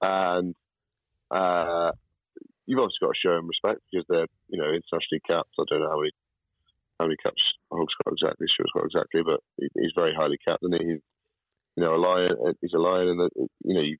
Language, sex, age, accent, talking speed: English, male, 30-49, British, 205 wpm